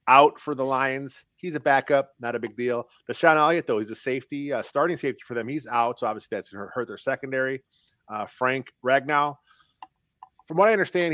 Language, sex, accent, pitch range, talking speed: English, male, American, 110-135 Hz, 200 wpm